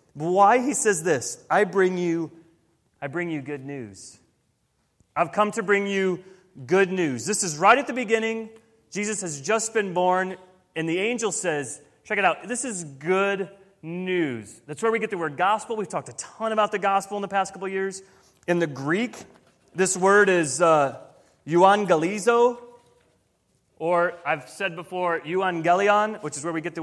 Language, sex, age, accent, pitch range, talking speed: English, male, 30-49, American, 160-210 Hz, 180 wpm